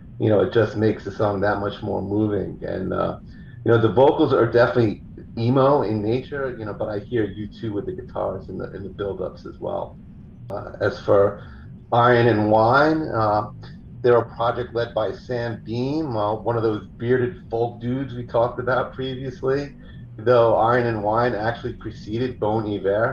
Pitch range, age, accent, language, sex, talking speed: 105-120 Hz, 40-59, American, English, male, 185 wpm